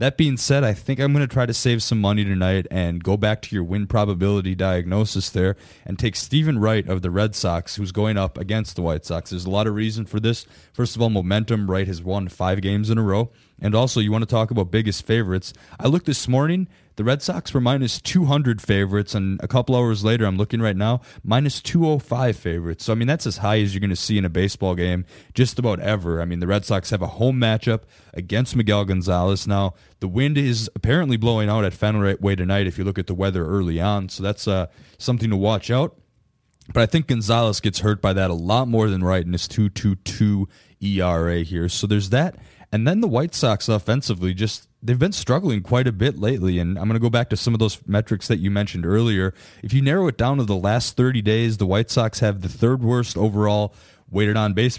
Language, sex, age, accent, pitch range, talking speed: English, male, 20-39, American, 95-115 Hz, 235 wpm